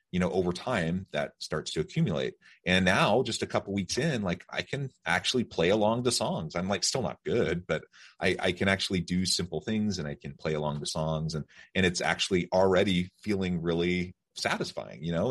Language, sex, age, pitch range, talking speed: English, male, 30-49, 80-95 Hz, 210 wpm